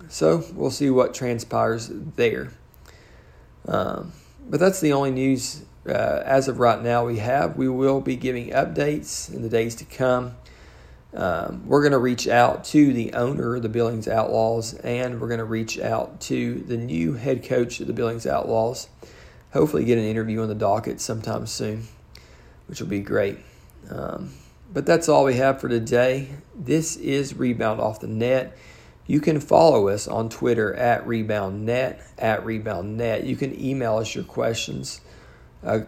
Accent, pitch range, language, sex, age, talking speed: American, 110-130 Hz, English, male, 40-59, 170 wpm